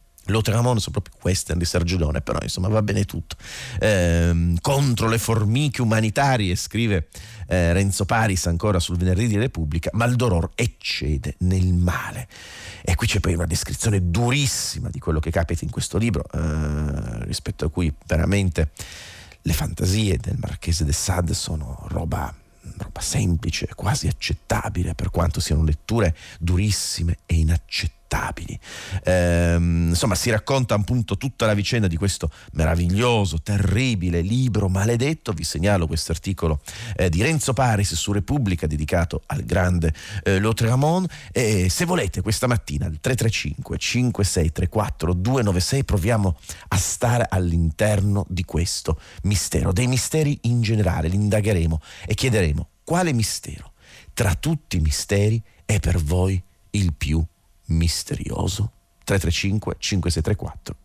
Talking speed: 135 wpm